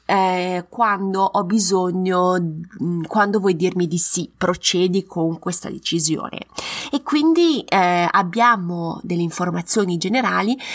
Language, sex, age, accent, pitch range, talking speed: Italian, female, 20-39, native, 175-225 Hz, 110 wpm